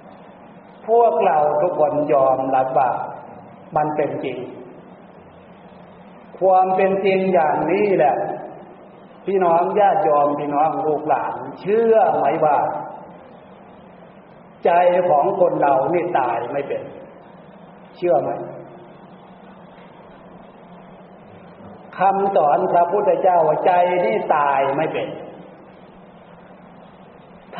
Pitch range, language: 150-195 Hz, Thai